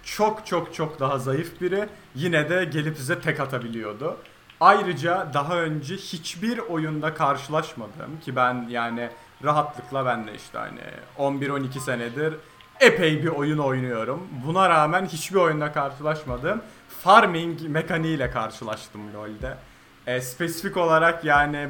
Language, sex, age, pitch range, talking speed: Turkish, male, 30-49, 130-170 Hz, 125 wpm